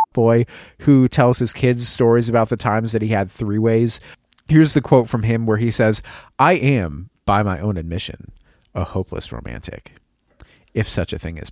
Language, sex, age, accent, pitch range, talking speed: English, male, 40-59, American, 80-110 Hz, 190 wpm